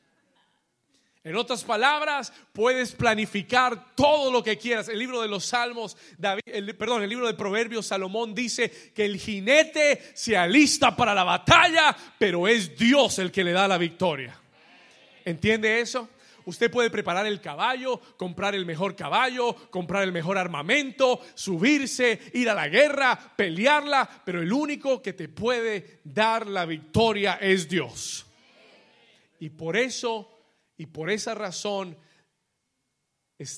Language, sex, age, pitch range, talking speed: Spanish, male, 40-59, 165-235 Hz, 140 wpm